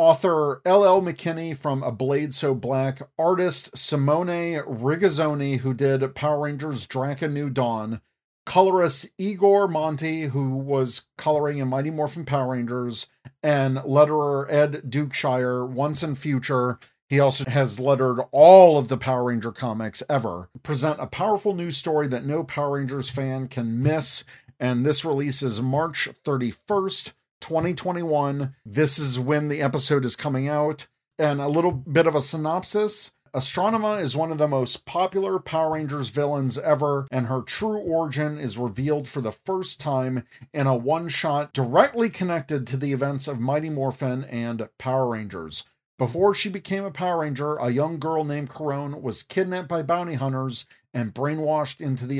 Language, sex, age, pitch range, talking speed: English, male, 50-69, 130-160 Hz, 155 wpm